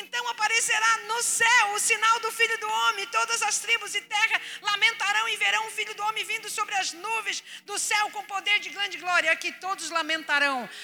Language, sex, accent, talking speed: Portuguese, female, Brazilian, 200 wpm